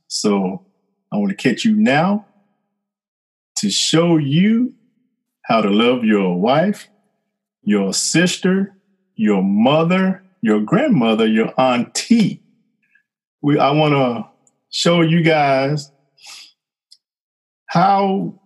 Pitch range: 135-195 Hz